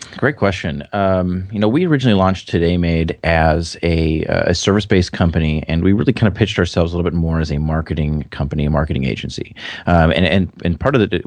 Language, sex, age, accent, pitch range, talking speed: English, male, 30-49, American, 75-90 Hz, 215 wpm